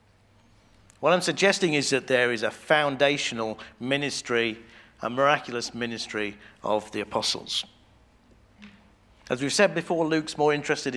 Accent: British